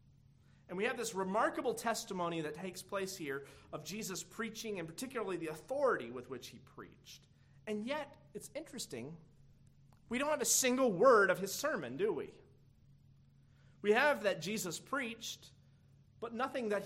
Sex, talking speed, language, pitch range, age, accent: male, 155 wpm, English, 140-215 Hz, 30-49, American